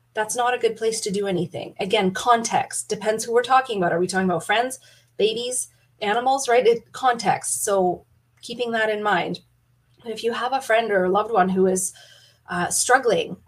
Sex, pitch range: female, 180-225 Hz